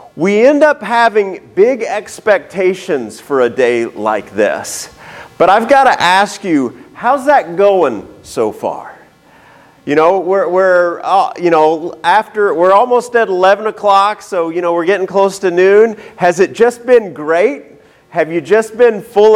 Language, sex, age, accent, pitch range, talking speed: English, male, 40-59, American, 190-255 Hz, 165 wpm